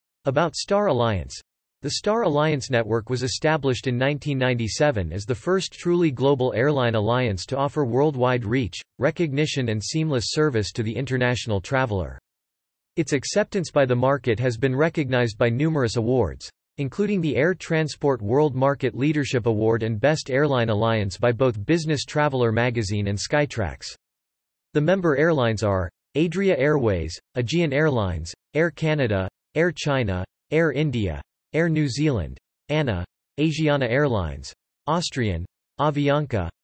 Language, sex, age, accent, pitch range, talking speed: English, male, 40-59, American, 105-150 Hz, 135 wpm